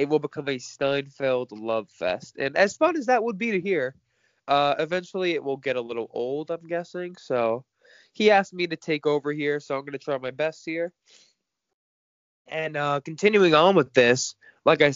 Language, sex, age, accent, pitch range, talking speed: English, male, 20-39, American, 125-165 Hz, 200 wpm